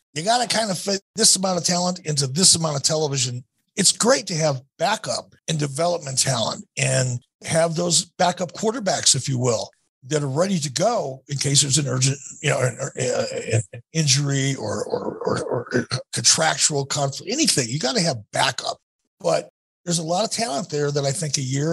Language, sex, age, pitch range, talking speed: English, male, 50-69, 130-170 Hz, 190 wpm